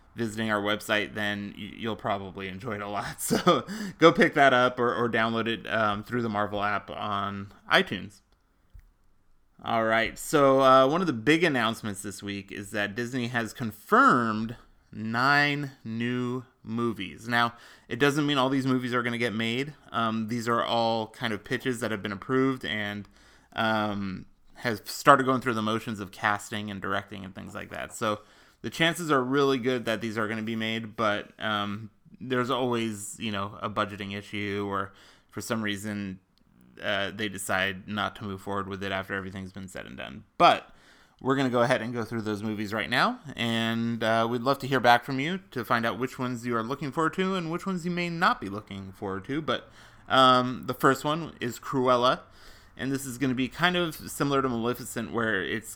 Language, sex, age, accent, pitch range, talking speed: English, male, 20-39, American, 105-130 Hz, 200 wpm